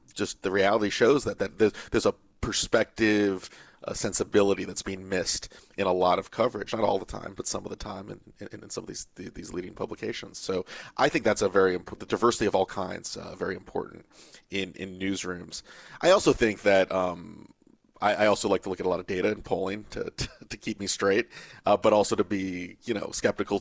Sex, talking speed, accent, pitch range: male, 220 wpm, American, 95-115 Hz